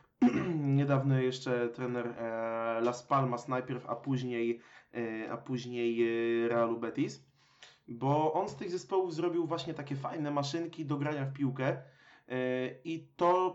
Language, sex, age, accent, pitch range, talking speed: Polish, male, 20-39, native, 130-160 Hz, 120 wpm